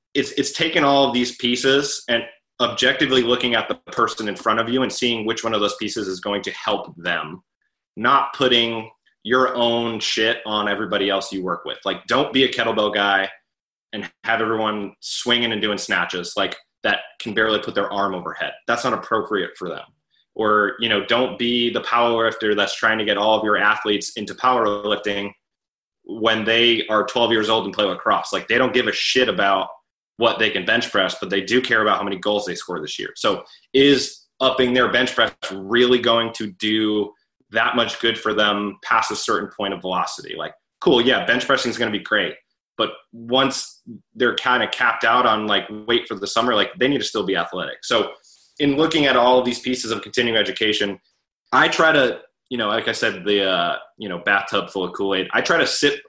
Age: 20-39